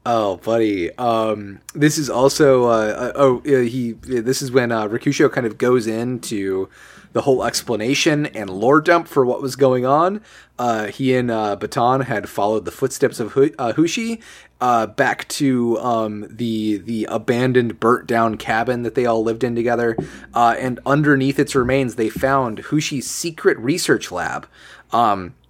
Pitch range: 115-140 Hz